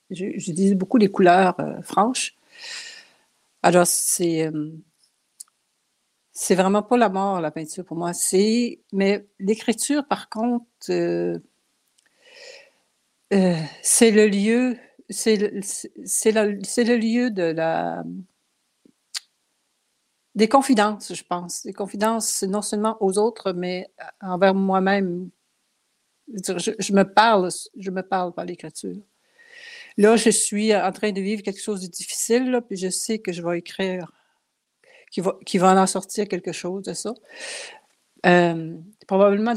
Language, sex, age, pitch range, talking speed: French, female, 60-79, 180-220 Hz, 135 wpm